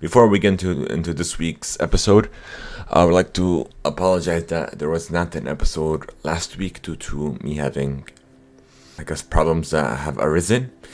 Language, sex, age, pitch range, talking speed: English, male, 30-49, 75-90 Hz, 175 wpm